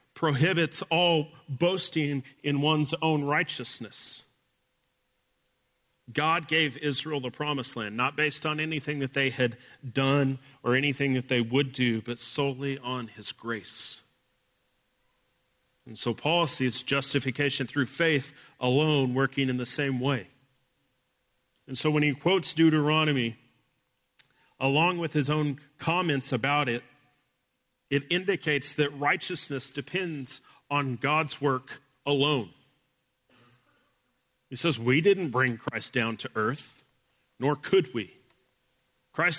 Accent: American